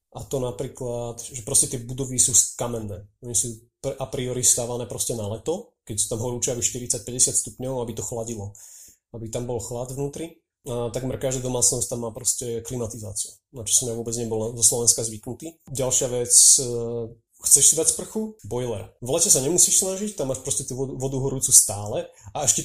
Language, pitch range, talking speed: Slovak, 115-135 Hz, 190 wpm